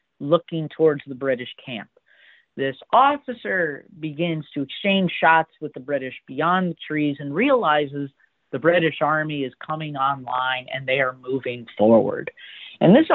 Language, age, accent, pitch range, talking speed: English, 40-59, American, 140-170 Hz, 145 wpm